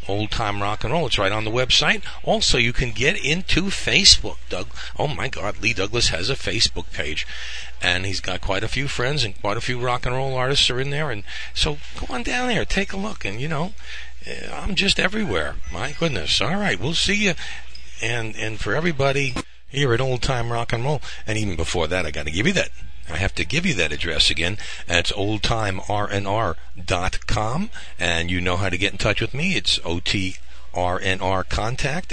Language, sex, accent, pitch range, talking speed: English, male, American, 95-125 Hz, 205 wpm